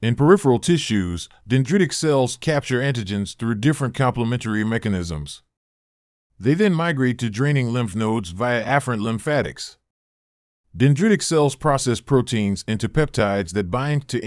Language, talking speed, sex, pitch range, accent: English, 125 wpm, male, 110-145 Hz, American